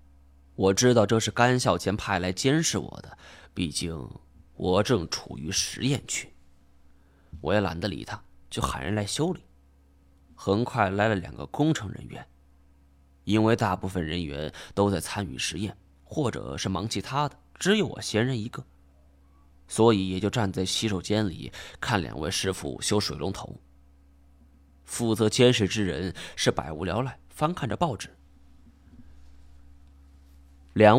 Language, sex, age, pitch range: Chinese, male, 20-39, 70-115 Hz